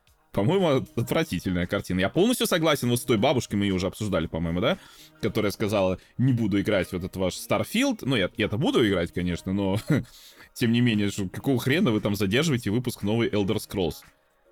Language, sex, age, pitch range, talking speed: Russian, male, 20-39, 90-120 Hz, 180 wpm